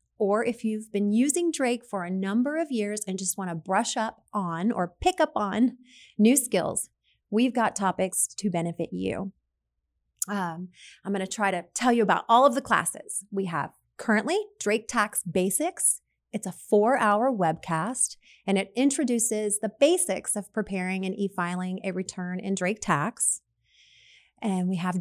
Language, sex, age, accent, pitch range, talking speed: English, female, 30-49, American, 185-240 Hz, 170 wpm